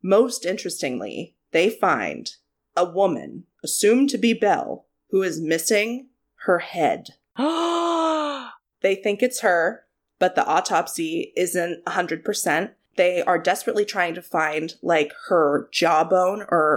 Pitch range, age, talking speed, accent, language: 165-250 Hz, 20-39, 130 wpm, American, English